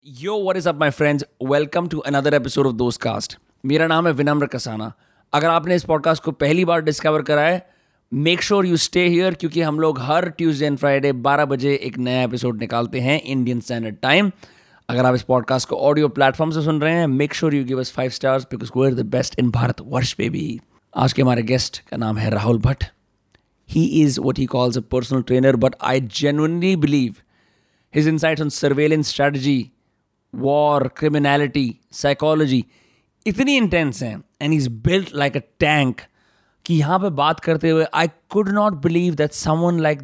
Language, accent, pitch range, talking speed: Hindi, native, 130-160 Hz, 190 wpm